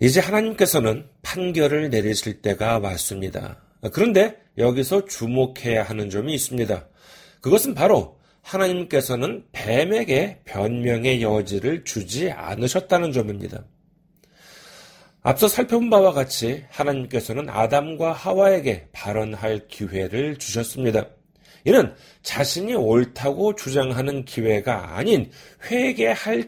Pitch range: 120-195 Hz